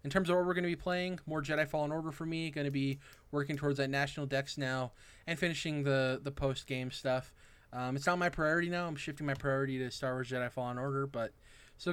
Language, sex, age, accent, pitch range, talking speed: English, male, 20-39, American, 120-140 Hz, 240 wpm